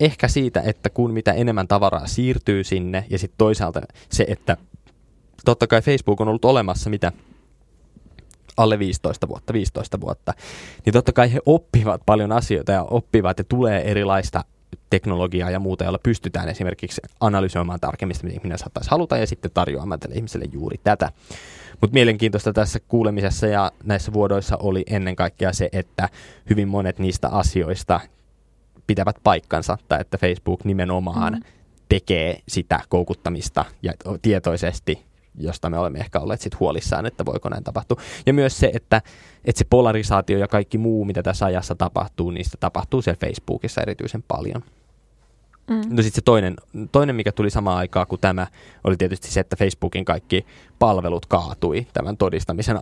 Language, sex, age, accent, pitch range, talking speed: Finnish, male, 20-39, native, 90-115 Hz, 150 wpm